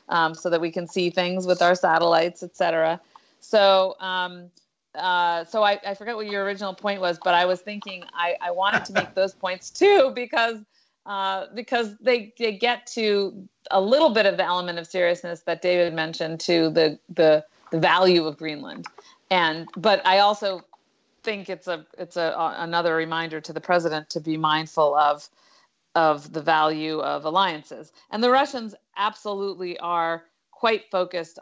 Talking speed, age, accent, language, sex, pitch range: 175 wpm, 40-59, American, English, female, 165-195 Hz